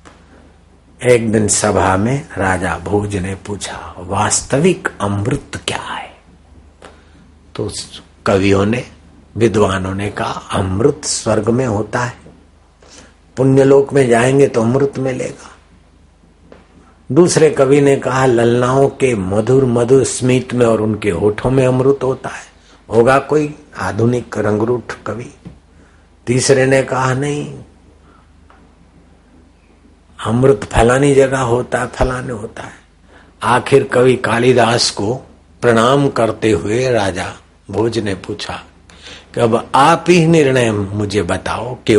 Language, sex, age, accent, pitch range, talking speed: Hindi, male, 50-69, native, 90-130 Hz, 115 wpm